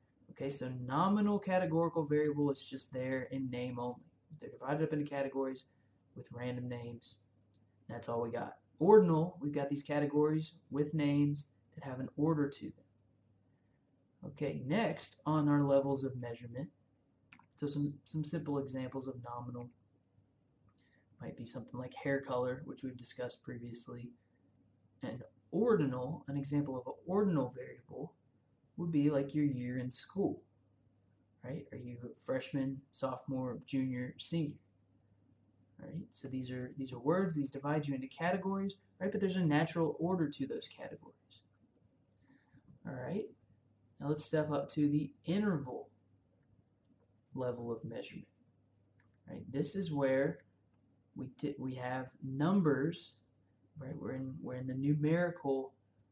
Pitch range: 120-145 Hz